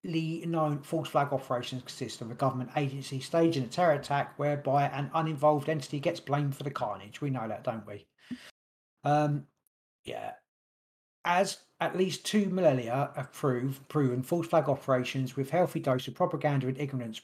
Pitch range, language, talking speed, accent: 130-155 Hz, English, 165 wpm, British